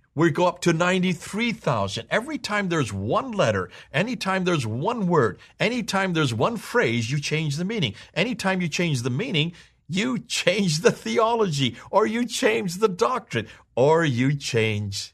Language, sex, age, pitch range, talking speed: English, male, 50-69, 100-170 Hz, 155 wpm